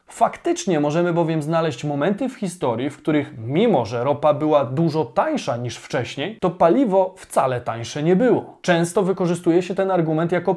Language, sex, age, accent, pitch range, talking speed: Polish, male, 20-39, native, 145-195 Hz, 165 wpm